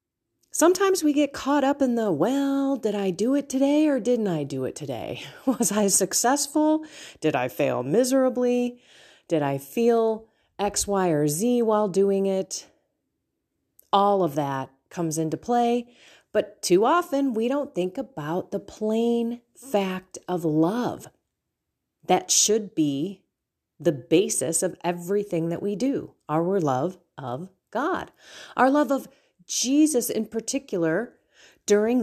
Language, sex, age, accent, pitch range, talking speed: English, female, 30-49, American, 165-245 Hz, 140 wpm